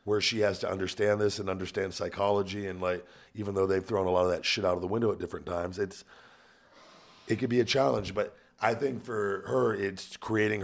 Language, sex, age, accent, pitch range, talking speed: English, male, 40-59, American, 90-110 Hz, 225 wpm